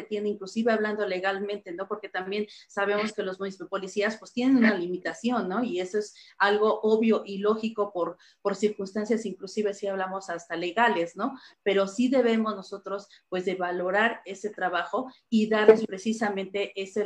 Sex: female